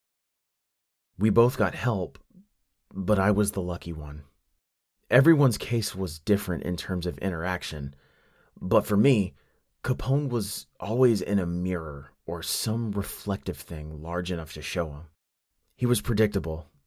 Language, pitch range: English, 80-110 Hz